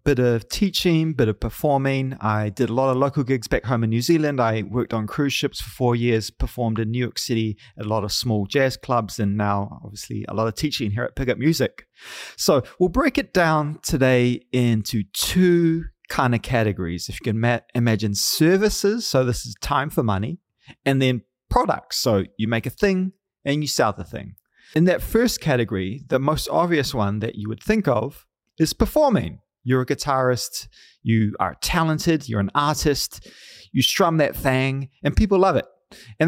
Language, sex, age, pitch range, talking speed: English, male, 30-49, 110-150 Hz, 195 wpm